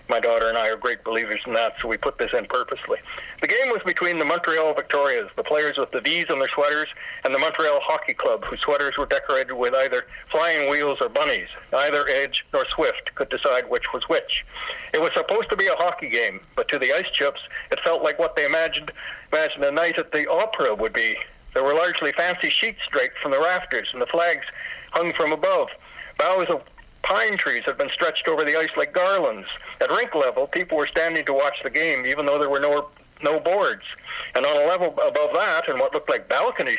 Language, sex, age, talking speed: English, male, 60-79, 225 wpm